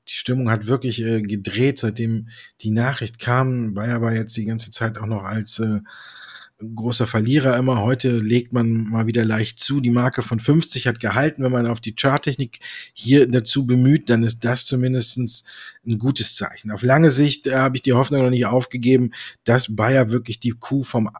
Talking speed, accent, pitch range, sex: 190 wpm, German, 115-130 Hz, male